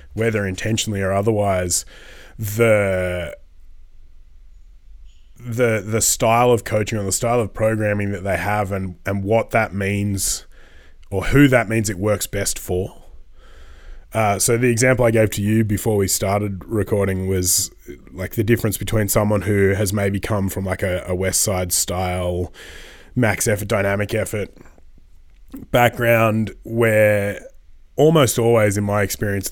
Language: English